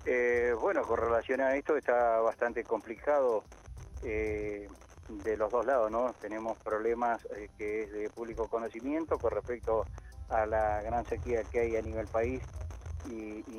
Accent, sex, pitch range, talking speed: Argentinian, male, 110-135 Hz, 160 wpm